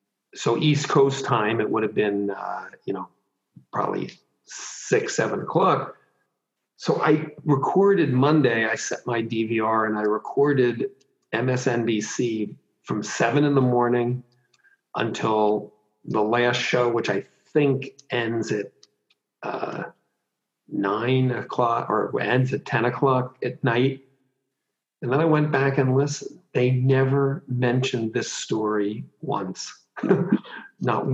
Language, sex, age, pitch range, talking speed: English, male, 50-69, 110-135 Hz, 125 wpm